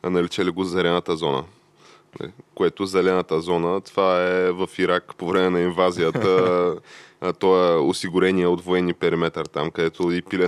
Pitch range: 85-95 Hz